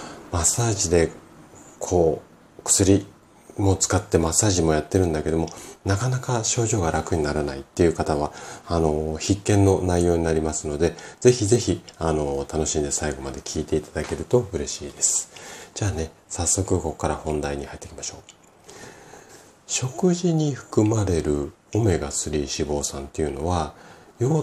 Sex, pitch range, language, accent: male, 75-100 Hz, Japanese, native